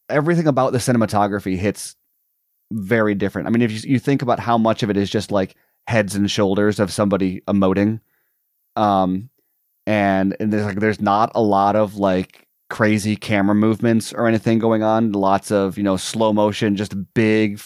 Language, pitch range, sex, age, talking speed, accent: English, 95-110 Hz, male, 30-49, 180 wpm, American